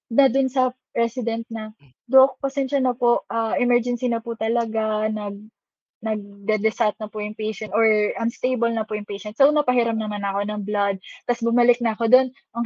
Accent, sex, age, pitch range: native, female, 10-29, 235-300 Hz